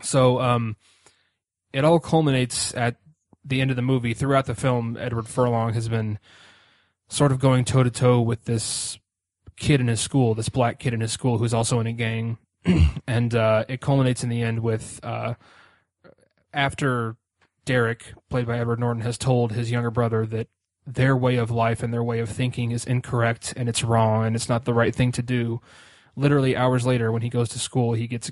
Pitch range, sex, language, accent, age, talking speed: 115-125 Hz, male, English, American, 20-39, 195 wpm